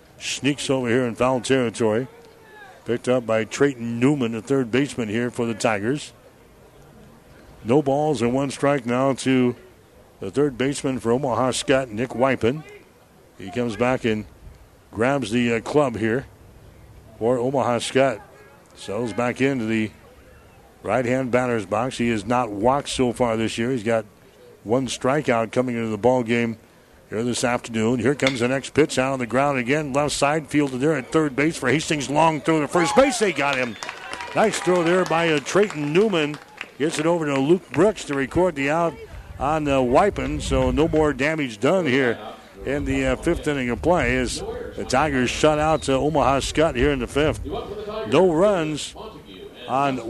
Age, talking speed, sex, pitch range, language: 60-79, 175 wpm, male, 120-145 Hz, English